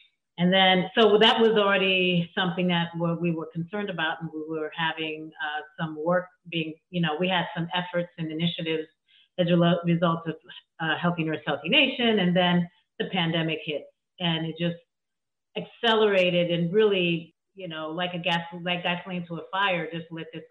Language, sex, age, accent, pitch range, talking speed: English, female, 40-59, American, 165-200 Hz, 180 wpm